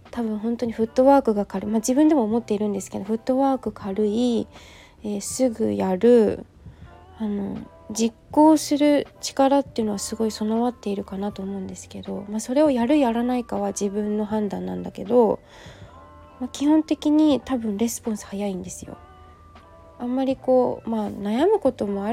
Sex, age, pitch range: female, 20-39, 200-255 Hz